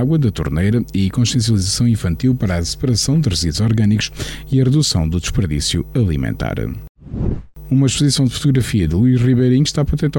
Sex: male